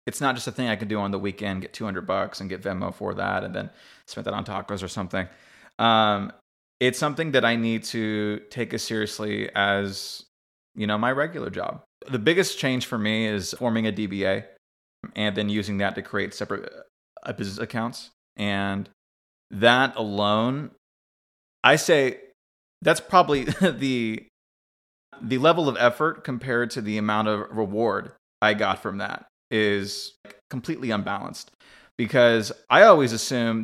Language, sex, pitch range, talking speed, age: English, male, 100-115 Hz, 160 wpm, 30-49